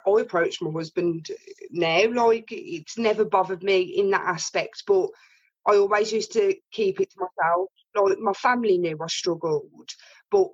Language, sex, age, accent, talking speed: English, female, 20-39, British, 165 wpm